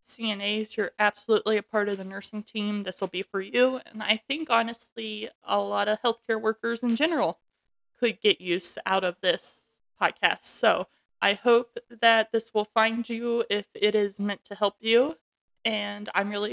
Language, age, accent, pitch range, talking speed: English, 20-39, American, 200-235 Hz, 180 wpm